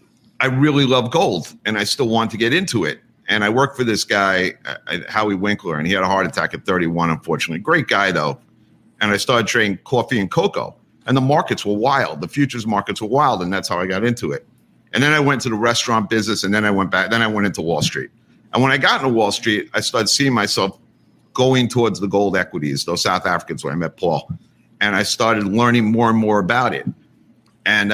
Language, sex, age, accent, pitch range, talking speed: English, male, 50-69, American, 105-125 Hz, 230 wpm